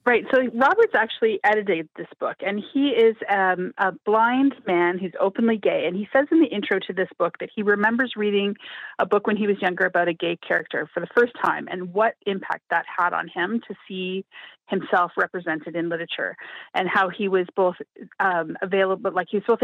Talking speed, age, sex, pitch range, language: 210 wpm, 30-49, female, 180-225 Hz, English